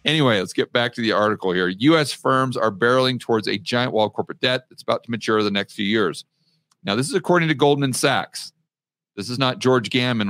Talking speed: 225 wpm